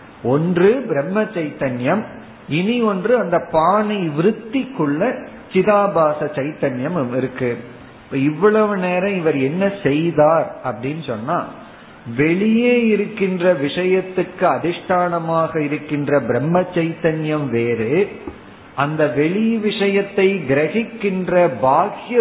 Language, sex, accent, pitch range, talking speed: Tamil, male, native, 140-185 Hz, 80 wpm